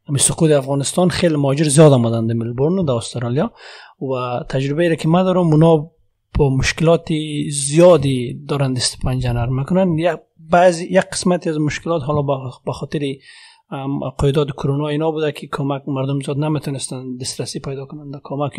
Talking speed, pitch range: 140 wpm, 130-160 Hz